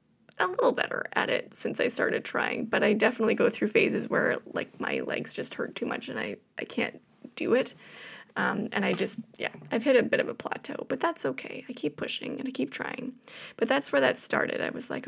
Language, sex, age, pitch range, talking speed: English, female, 20-39, 210-255 Hz, 235 wpm